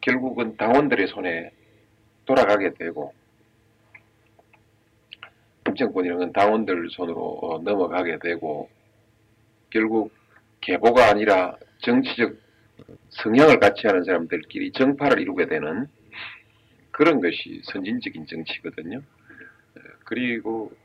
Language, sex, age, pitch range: Korean, male, 40-59, 110-115 Hz